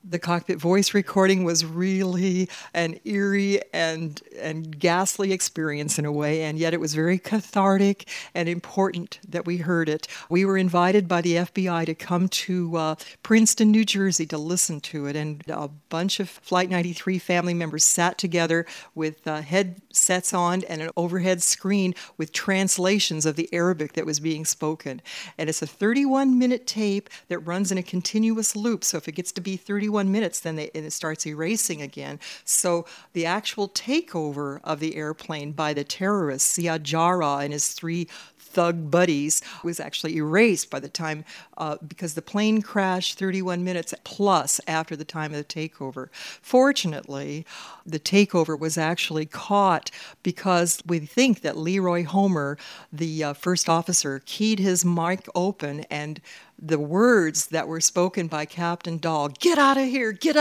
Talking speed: 165 wpm